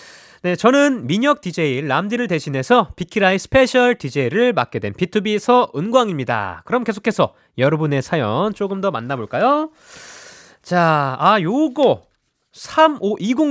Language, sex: Korean, male